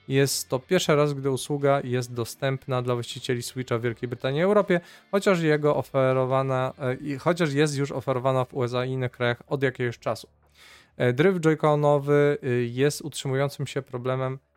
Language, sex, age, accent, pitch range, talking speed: Polish, male, 20-39, native, 125-145 Hz, 150 wpm